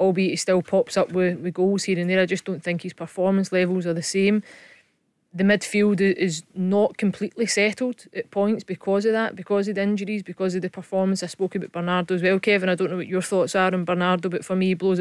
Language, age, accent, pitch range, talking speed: English, 20-39, British, 180-195 Hz, 240 wpm